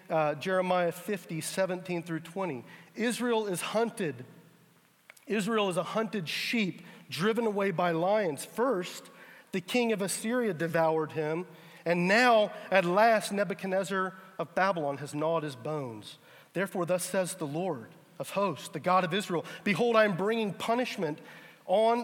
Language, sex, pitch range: English, male, 155-200 Hz